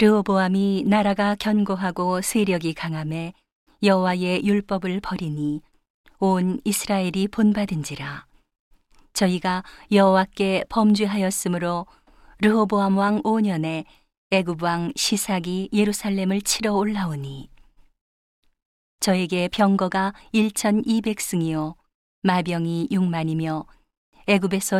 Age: 40-59